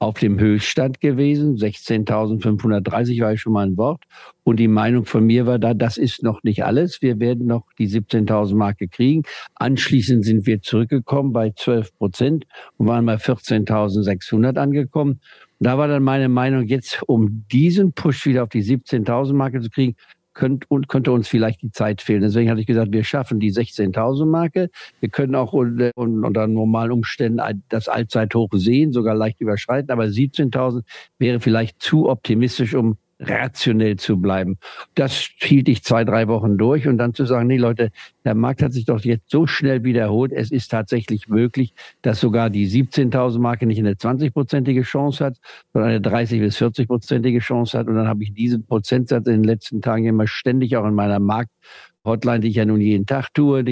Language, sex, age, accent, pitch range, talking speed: German, male, 50-69, German, 110-130 Hz, 180 wpm